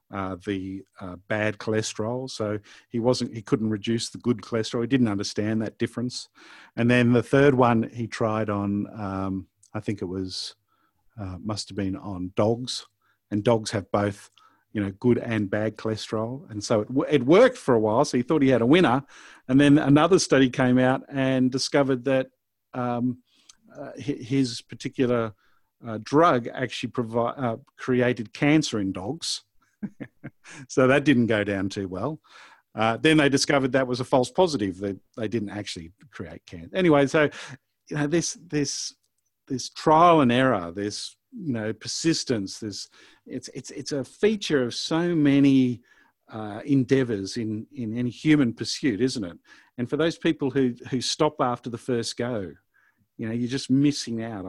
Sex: male